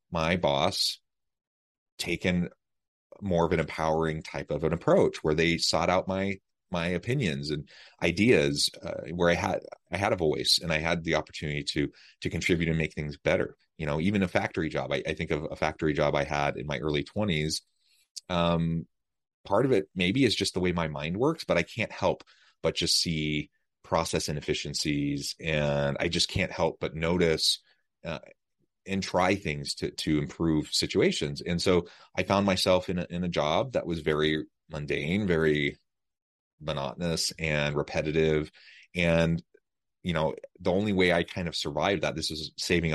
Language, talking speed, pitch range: English, 175 wpm, 75-90 Hz